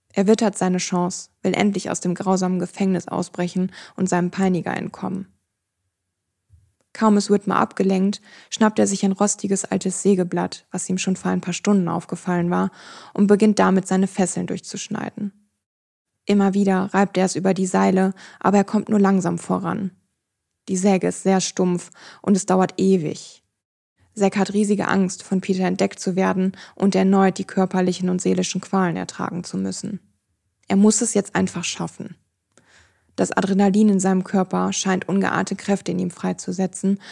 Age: 20-39